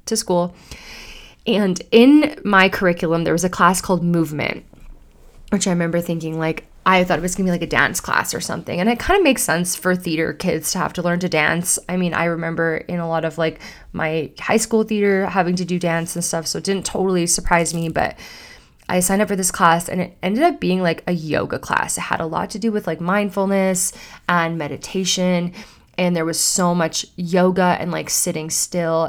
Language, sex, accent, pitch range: English, female, American, 165-195 Hz